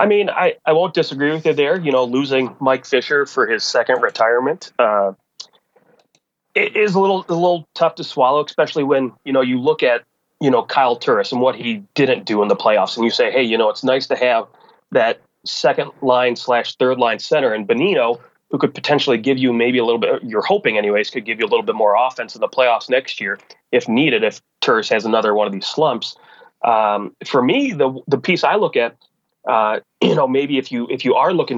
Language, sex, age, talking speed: English, male, 30-49, 230 wpm